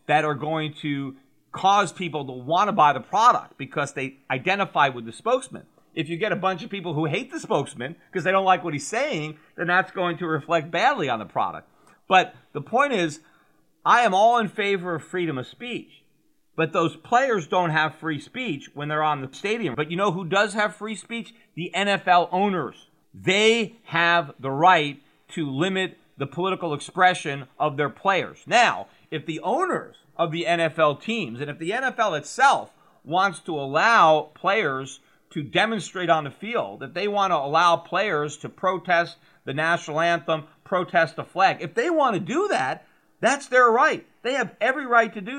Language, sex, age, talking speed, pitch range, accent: English, male, 40-59, 190 wpm, 155-205 Hz, American